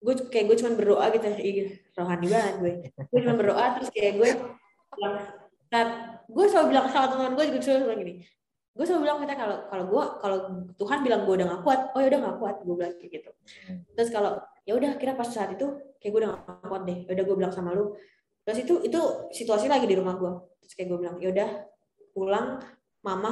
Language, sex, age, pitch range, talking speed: Indonesian, female, 20-39, 185-260 Hz, 215 wpm